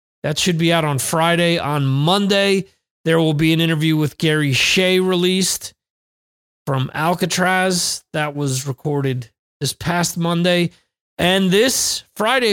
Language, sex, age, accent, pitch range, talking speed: English, male, 30-49, American, 145-185 Hz, 135 wpm